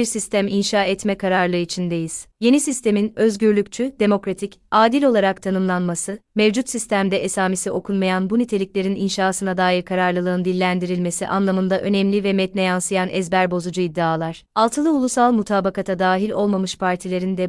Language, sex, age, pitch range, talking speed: Turkish, female, 30-49, 185-215 Hz, 130 wpm